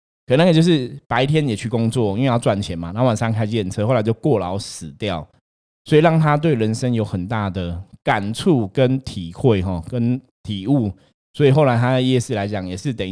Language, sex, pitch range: Chinese, male, 100-135 Hz